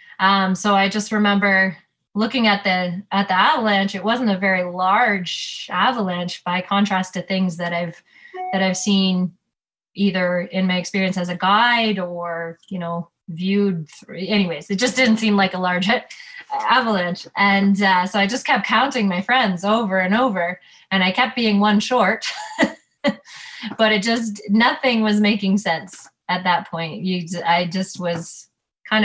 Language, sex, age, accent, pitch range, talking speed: English, female, 20-39, American, 180-210 Hz, 165 wpm